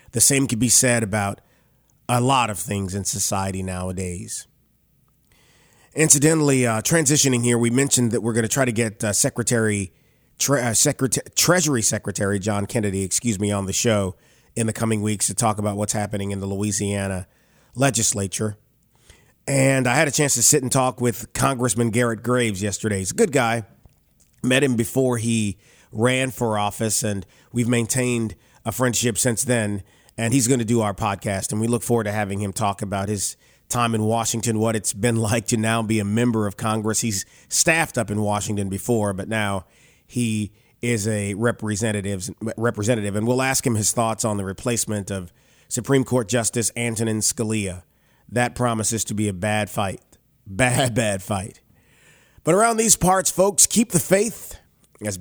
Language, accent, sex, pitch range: English, American, male, 105-125 Hz